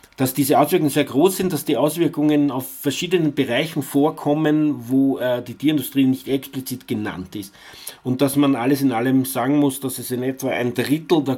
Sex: male